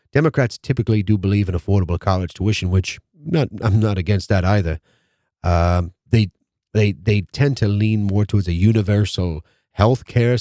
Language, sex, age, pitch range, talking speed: English, male, 30-49, 95-115 Hz, 160 wpm